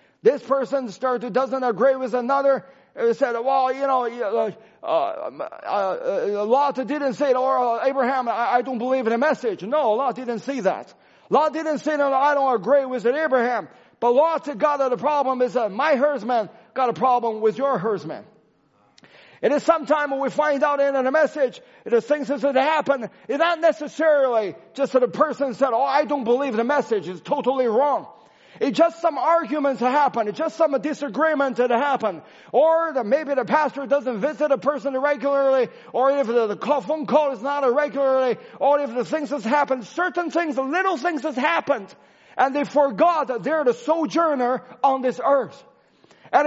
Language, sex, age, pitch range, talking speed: English, male, 40-59, 250-300 Hz, 185 wpm